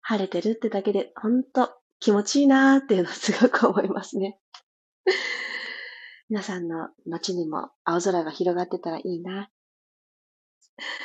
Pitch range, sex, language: 185-270 Hz, female, Japanese